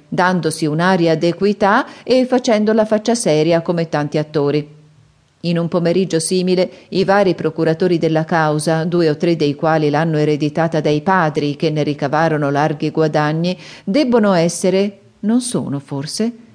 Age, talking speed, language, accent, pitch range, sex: 40-59, 140 wpm, Italian, native, 155-205 Hz, female